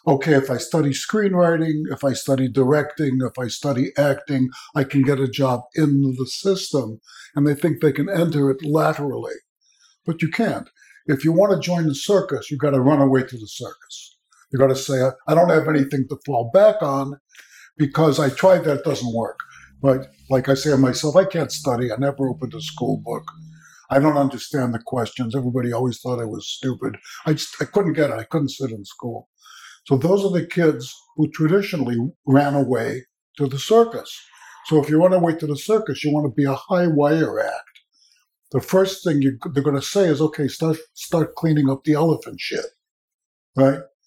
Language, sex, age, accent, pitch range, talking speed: English, male, 60-79, American, 135-160 Hz, 200 wpm